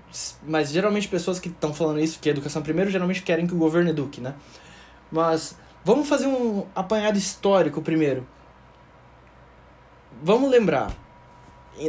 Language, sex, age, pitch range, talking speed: Portuguese, male, 20-39, 145-200 Hz, 140 wpm